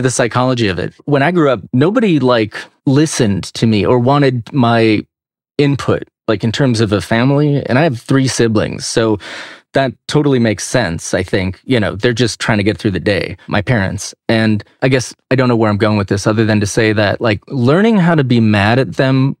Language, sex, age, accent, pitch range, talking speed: English, male, 30-49, American, 110-135 Hz, 220 wpm